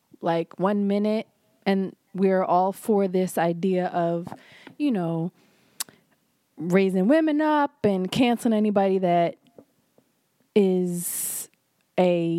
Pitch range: 175-215 Hz